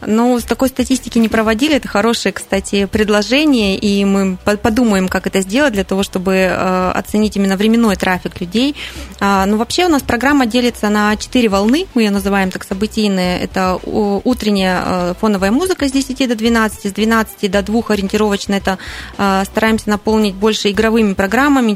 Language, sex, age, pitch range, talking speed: Russian, female, 20-39, 195-225 Hz, 160 wpm